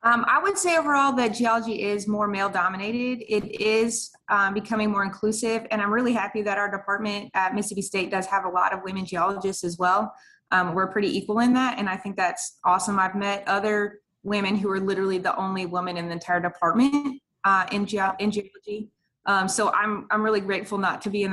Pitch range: 195-235 Hz